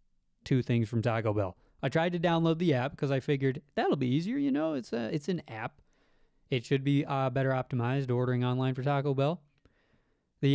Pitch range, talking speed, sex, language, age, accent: 125-155 Hz, 200 wpm, male, English, 20-39, American